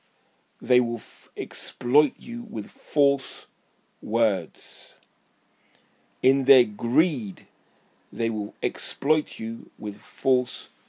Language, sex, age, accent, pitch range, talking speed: English, male, 40-59, British, 110-135 Hz, 95 wpm